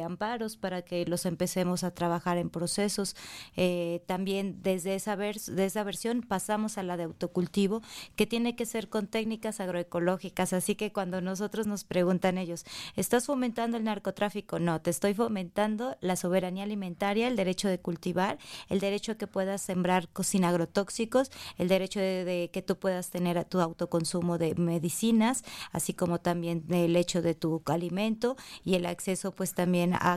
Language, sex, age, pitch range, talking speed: Spanish, female, 20-39, 180-215 Hz, 170 wpm